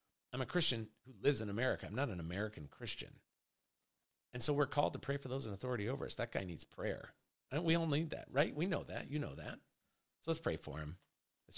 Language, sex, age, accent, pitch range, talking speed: English, male, 40-59, American, 90-140 Hz, 240 wpm